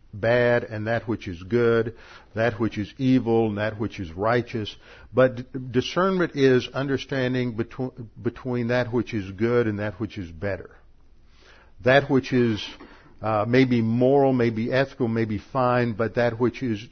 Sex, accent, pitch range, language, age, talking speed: male, American, 110-130 Hz, English, 50-69, 155 wpm